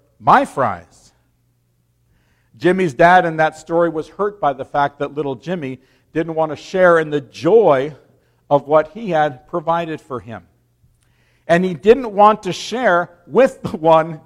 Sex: male